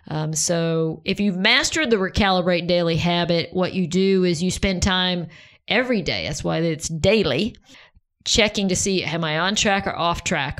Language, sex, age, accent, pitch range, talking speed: English, female, 50-69, American, 165-195 Hz, 180 wpm